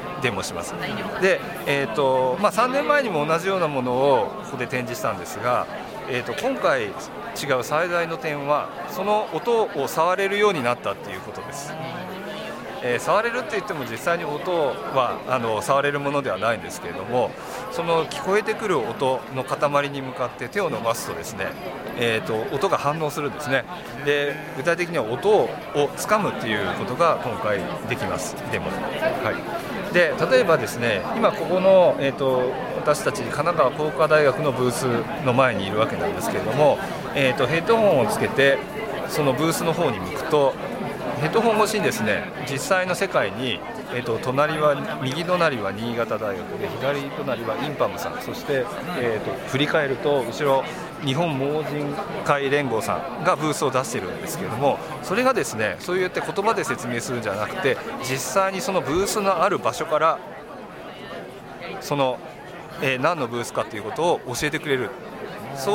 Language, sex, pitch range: Japanese, male, 135-195 Hz